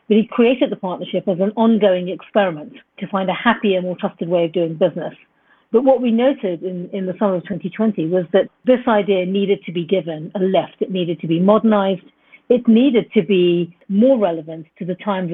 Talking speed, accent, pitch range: 205 wpm, British, 175-215 Hz